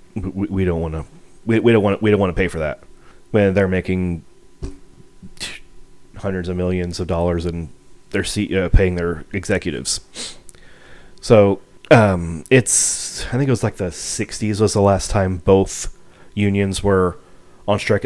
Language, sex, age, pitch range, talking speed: English, male, 30-49, 90-110 Hz, 165 wpm